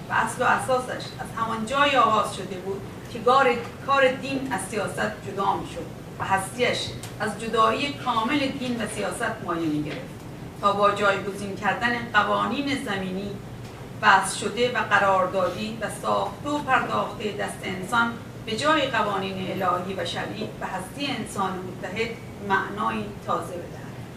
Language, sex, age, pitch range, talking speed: Persian, female, 40-59, 195-260 Hz, 140 wpm